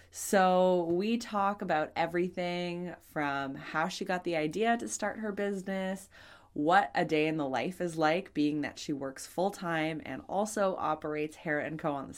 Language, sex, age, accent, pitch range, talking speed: English, female, 20-39, American, 150-185 Hz, 180 wpm